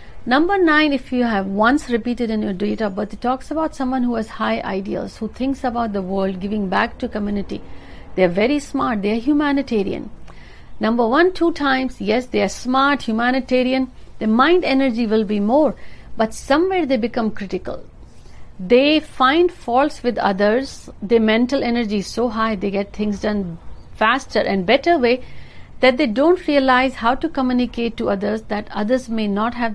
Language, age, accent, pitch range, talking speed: Hindi, 60-79, native, 210-270 Hz, 180 wpm